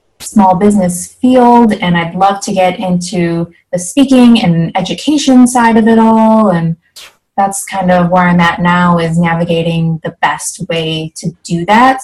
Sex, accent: female, American